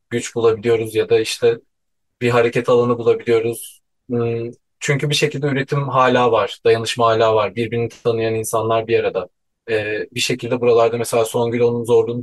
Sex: male